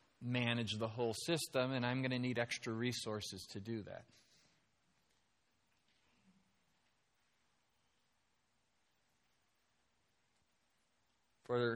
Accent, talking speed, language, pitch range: American, 75 wpm, English, 110-145 Hz